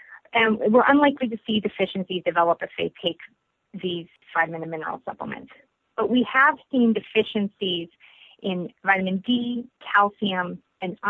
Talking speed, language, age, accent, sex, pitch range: 135 wpm, English, 30-49, American, female, 185-240 Hz